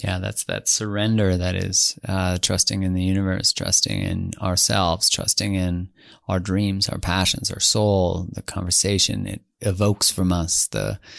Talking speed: 155 wpm